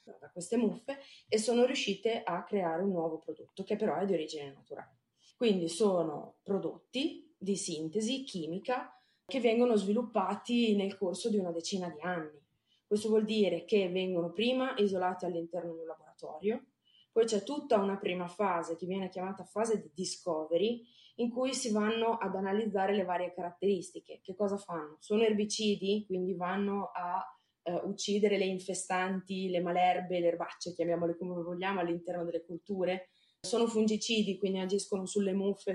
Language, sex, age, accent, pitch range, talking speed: Italian, female, 20-39, native, 175-215 Hz, 155 wpm